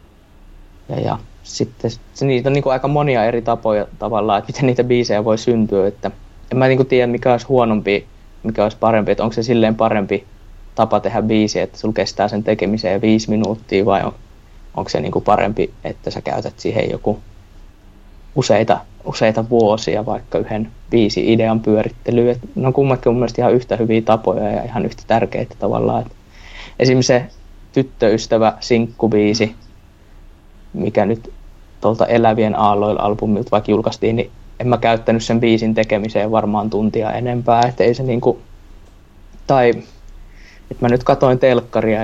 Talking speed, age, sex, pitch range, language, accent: 155 wpm, 20-39, male, 100-115 Hz, Finnish, native